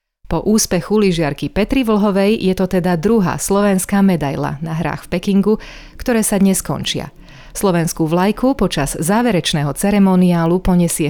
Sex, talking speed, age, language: female, 135 wpm, 30-49, Slovak